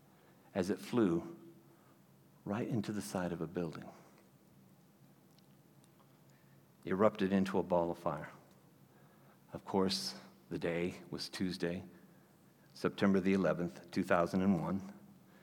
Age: 60-79